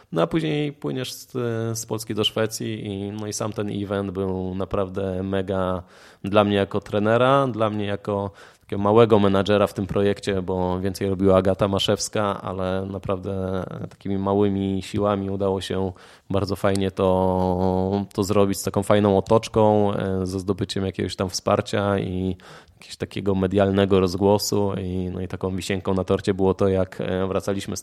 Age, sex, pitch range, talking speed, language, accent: 20-39, male, 95-110 Hz, 160 wpm, Polish, native